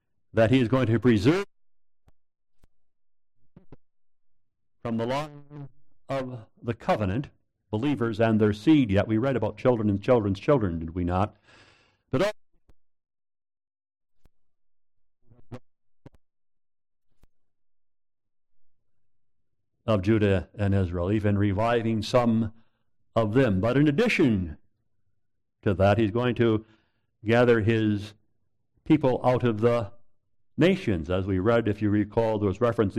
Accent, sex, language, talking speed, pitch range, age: American, male, English, 115 wpm, 100-120 Hz, 50-69